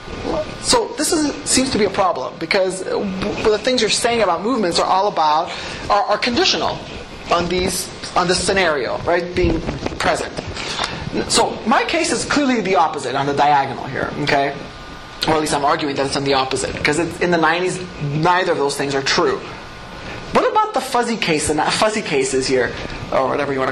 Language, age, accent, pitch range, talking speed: English, 30-49, American, 160-215 Hz, 190 wpm